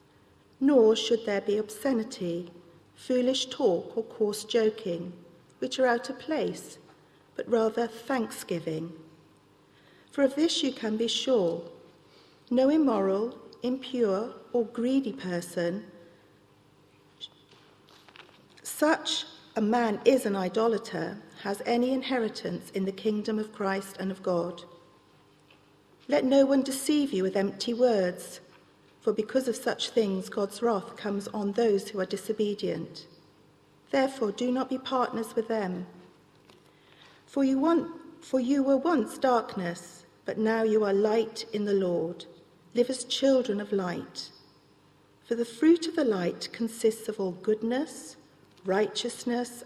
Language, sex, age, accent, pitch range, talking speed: English, female, 50-69, British, 195-255 Hz, 130 wpm